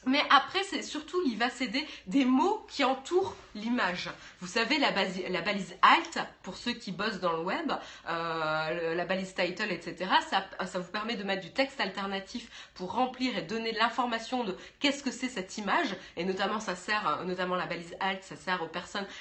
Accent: French